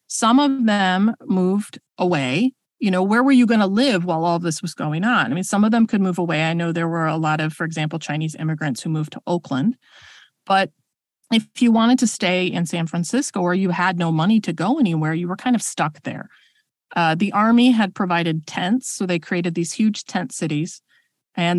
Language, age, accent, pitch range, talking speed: English, 30-49, American, 170-220 Hz, 220 wpm